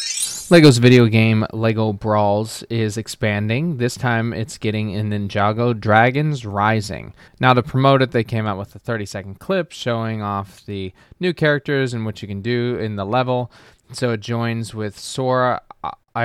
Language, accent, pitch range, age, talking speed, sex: English, American, 105-125 Hz, 20-39, 160 wpm, male